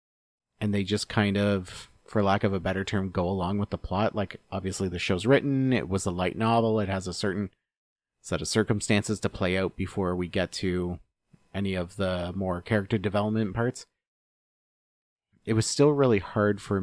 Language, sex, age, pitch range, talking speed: English, male, 30-49, 95-105 Hz, 190 wpm